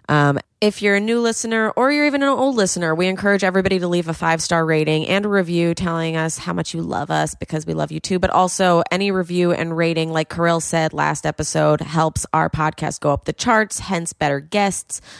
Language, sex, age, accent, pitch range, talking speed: English, female, 20-39, American, 145-180 Hz, 220 wpm